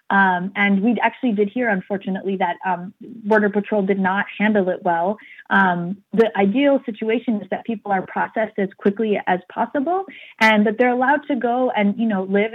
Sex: female